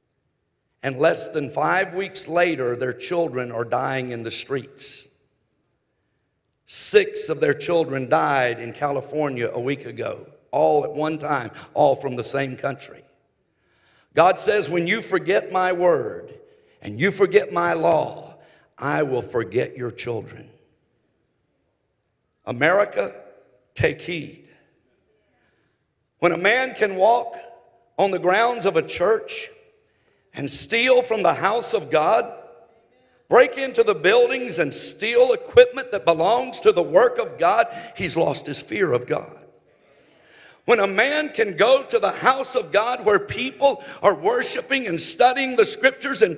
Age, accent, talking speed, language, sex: 50-69, American, 140 wpm, English, male